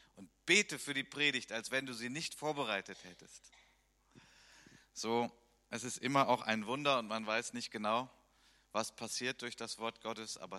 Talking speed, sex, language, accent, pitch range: 170 wpm, male, German, German, 100-130 Hz